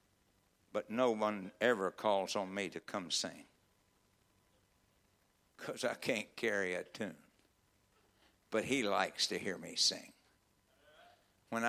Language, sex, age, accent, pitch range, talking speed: English, male, 60-79, American, 100-130 Hz, 125 wpm